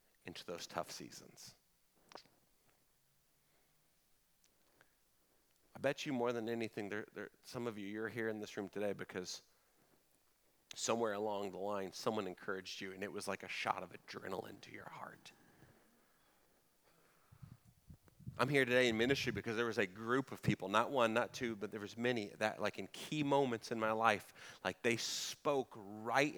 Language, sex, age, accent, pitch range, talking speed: English, male, 40-59, American, 105-125 Hz, 160 wpm